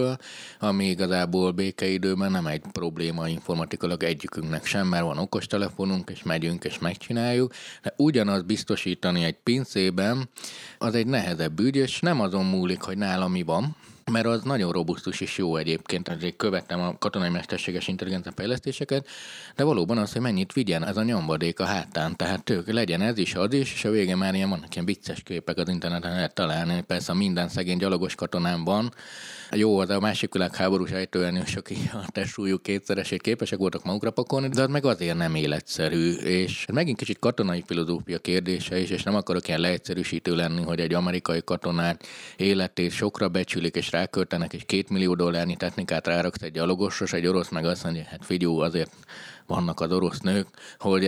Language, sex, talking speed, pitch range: Hungarian, male, 175 wpm, 85-110 Hz